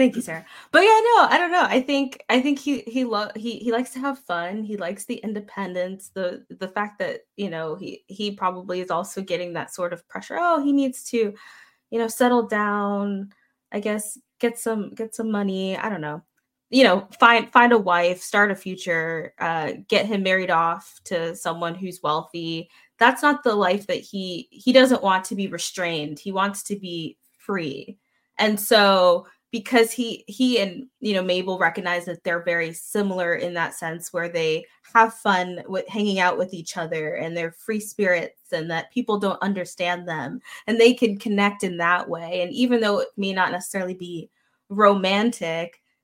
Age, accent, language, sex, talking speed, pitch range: 20-39, American, English, female, 195 wpm, 175-230 Hz